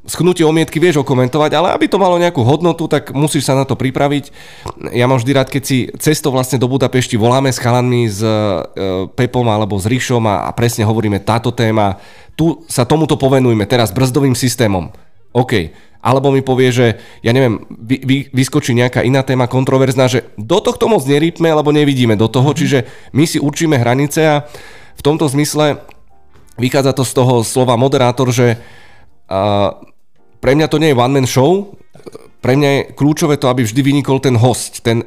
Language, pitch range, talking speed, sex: Slovak, 120-140 Hz, 180 wpm, male